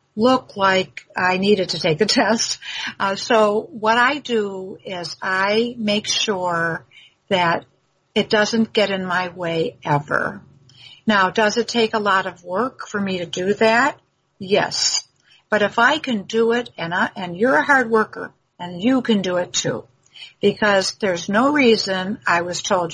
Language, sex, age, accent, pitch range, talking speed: English, female, 60-79, American, 180-235 Hz, 170 wpm